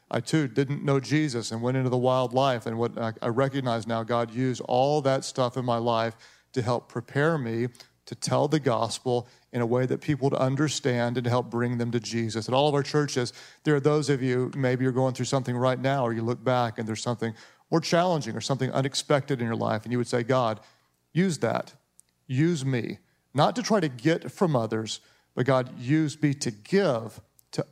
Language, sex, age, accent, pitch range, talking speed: English, male, 40-59, American, 120-145 Hz, 215 wpm